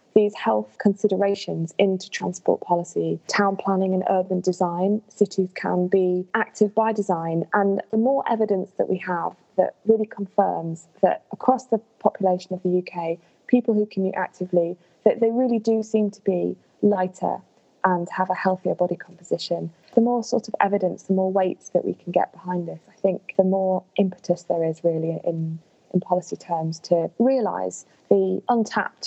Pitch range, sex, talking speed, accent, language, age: 180-220 Hz, female, 170 wpm, British, English, 20-39